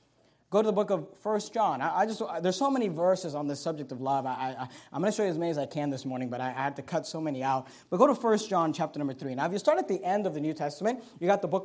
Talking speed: 310 wpm